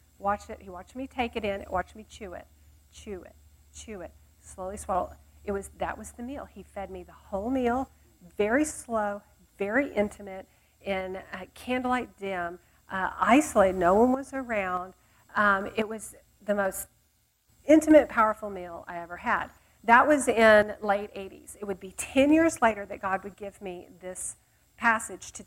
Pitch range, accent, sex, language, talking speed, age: 185-235 Hz, American, female, English, 175 wpm, 40-59